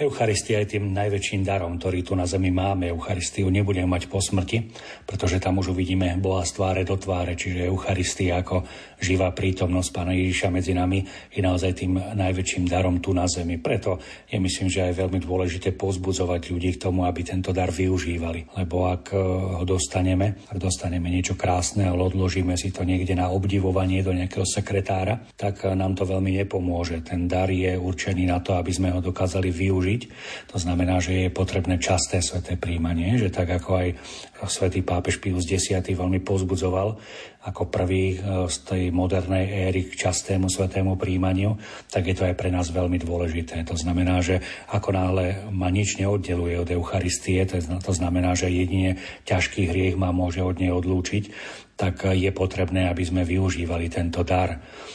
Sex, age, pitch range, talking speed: male, 40-59, 90-95 Hz, 170 wpm